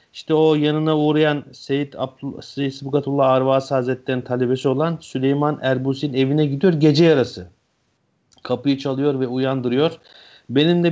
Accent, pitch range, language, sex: native, 125-155 Hz, Turkish, male